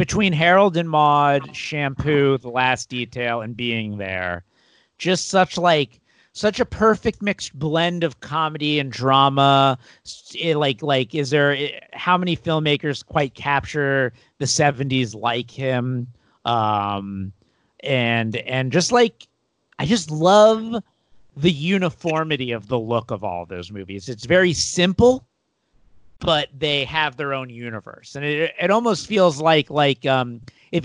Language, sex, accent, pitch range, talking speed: English, male, American, 120-160 Hz, 140 wpm